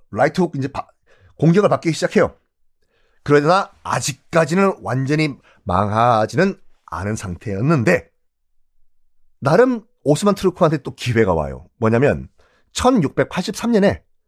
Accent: native